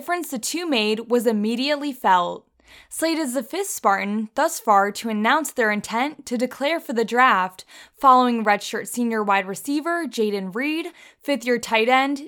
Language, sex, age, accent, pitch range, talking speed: English, female, 10-29, American, 215-275 Hz, 155 wpm